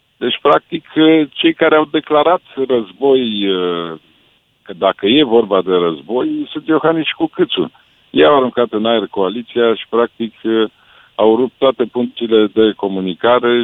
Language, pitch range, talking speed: Romanian, 105-150 Hz, 130 wpm